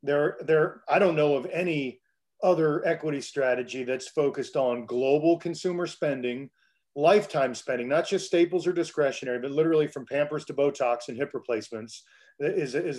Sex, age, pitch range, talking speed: male, 40-59, 130-155 Hz, 155 wpm